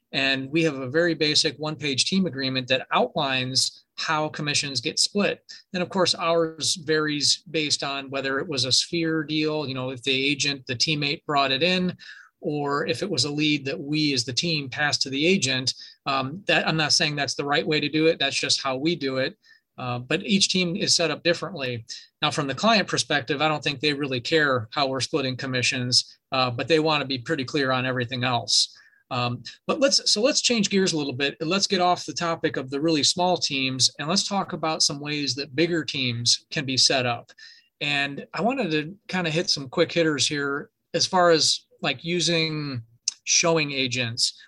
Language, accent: English, American